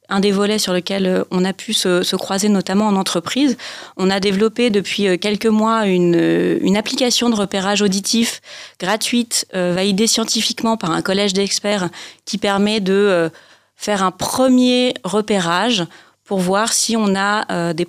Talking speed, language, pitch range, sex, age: 165 wpm, French, 185-235 Hz, female, 30-49